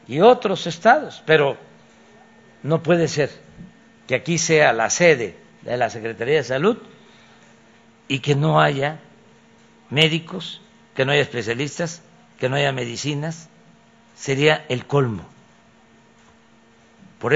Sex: male